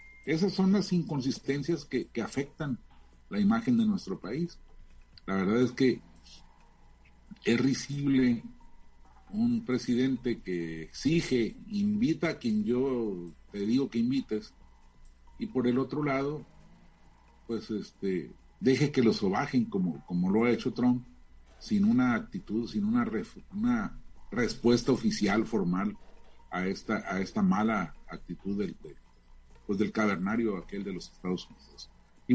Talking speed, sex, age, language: 135 wpm, male, 40-59, Spanish